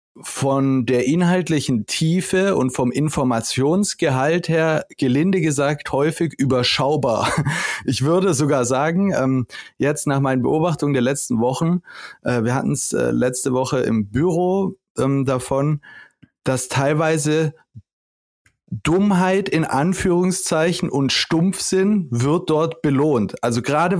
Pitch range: 130-170 Hz